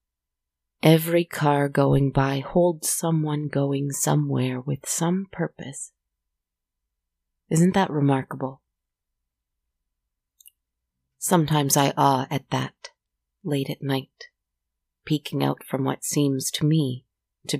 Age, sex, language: 30-49, female, English